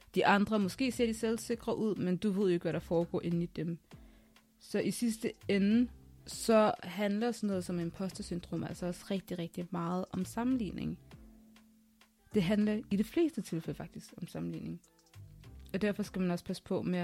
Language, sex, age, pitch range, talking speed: Danish, female, 20-39, 170-210 Hz, 185 wpm